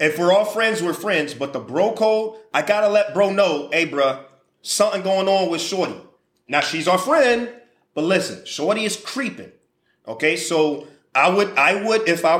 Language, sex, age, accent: English, male, 30-49, American